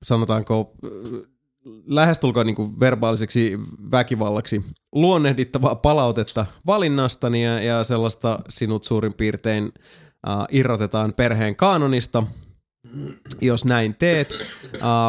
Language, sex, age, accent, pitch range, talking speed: Finnish, male, 20-39, native, 110-130 Hz, 85 wpm